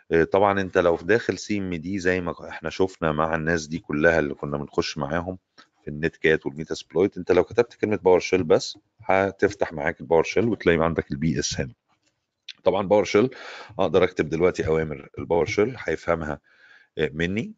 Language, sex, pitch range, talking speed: Arabic, male, 75-90 Hz, 180 wpm